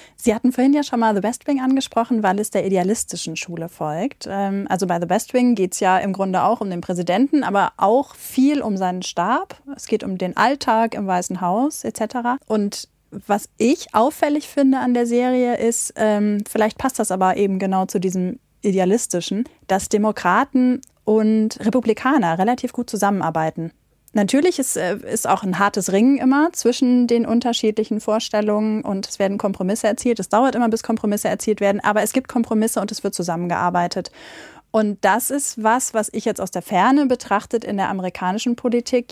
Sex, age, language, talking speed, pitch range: female, 30-49, German, 180 wpm, 190-245 Hz